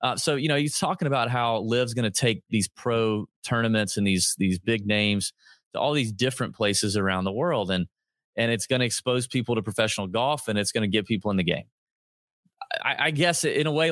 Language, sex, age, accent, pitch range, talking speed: English, male, 30-49, American, 110-135 Hz, 230 wpm